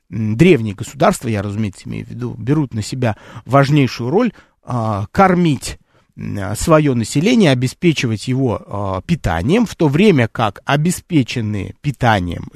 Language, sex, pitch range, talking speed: Russian, male, 115-160 Hz, 115 wpm